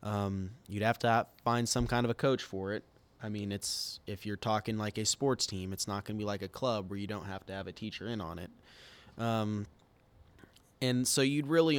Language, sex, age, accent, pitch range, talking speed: English, male, 20-39, American, 100-125 Hz, 230 wpm